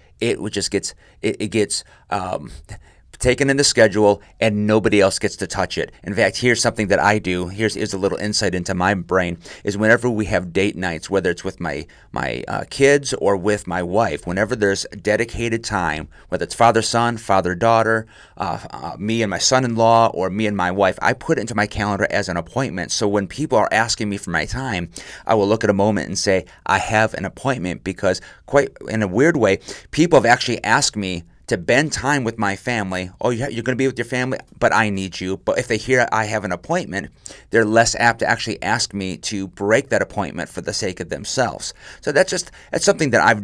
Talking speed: 220 wpm